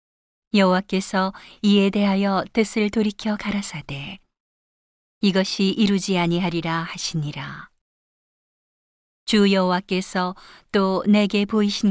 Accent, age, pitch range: native, 40-59, 180-205 Hz